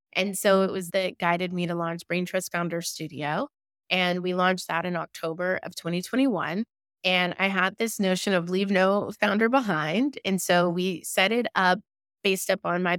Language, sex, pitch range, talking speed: English, female, 170-210 Hz, 195 wpm